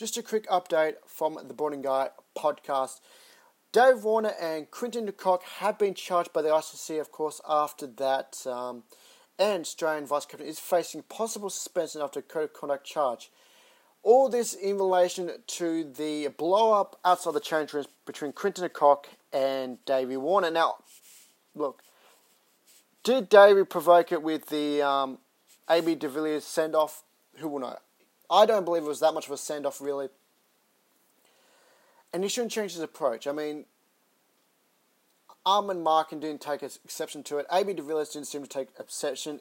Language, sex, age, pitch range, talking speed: English, male, 30-49, 145-190 Hz, 160 wpm